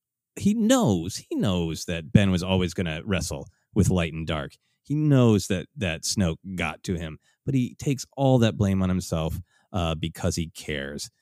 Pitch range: 90-120 Hz